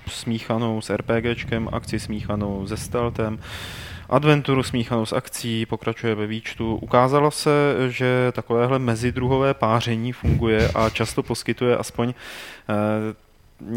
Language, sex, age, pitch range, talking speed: Czech, male, 20-39, 105-120 Hz, 115 wpm